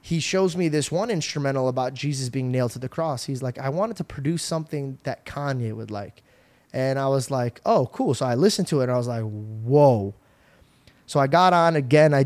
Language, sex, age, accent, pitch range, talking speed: English, male, 20-39, American, 125-150 Hz, 225 wpm